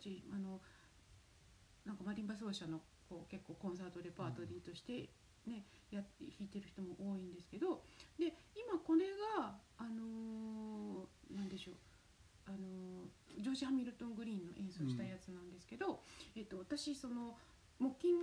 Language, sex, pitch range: Japanese, female, 185-300 Hz